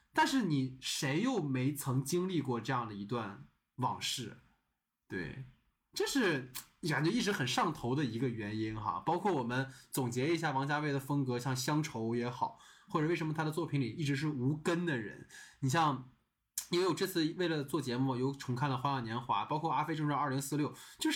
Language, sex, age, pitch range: Chinese, male, 20-39, 130-185 Hz